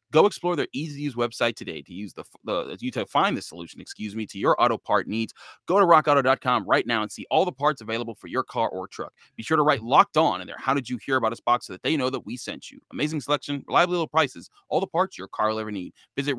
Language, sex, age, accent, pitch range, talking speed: English, male, 30-49, American, 110-145 Hz, 270 wpm